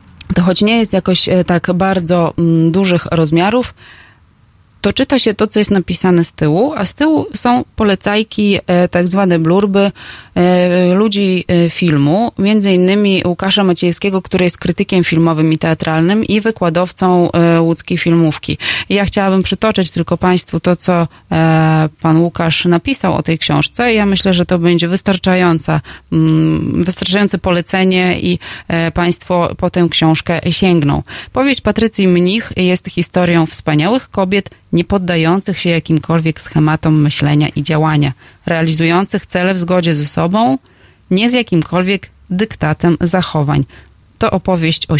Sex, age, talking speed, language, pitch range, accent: female, 20-39, 130 wpm, Polish, 165-195 Hz, native